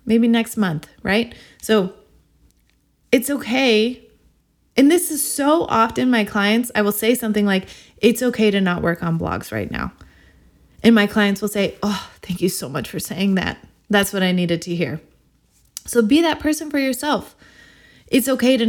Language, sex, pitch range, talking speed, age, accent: English, female, 190-245 Hz, 180 wpm, 20-39, American